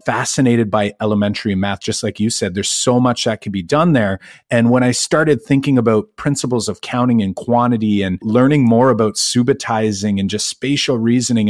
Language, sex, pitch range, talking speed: English, male, 105-125 Hz, 190 wpm